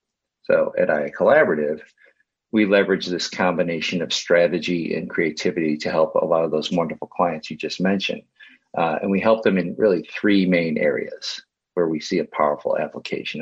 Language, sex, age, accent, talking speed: English, male, 50-69, American, 175 wpm